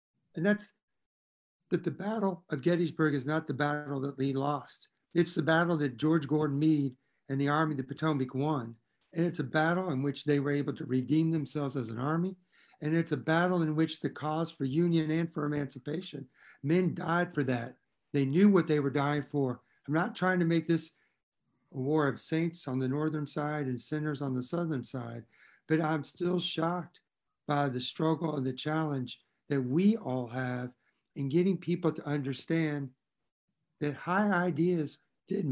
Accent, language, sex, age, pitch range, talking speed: American, English, male, 60-79, 135-170 Hz, 185 wpm